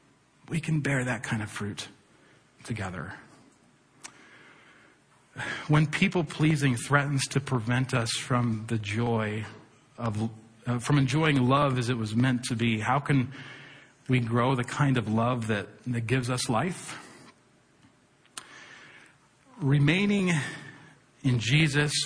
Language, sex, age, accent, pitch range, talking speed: English, male, 40-59, American, 115-140 Hz, 120 wpm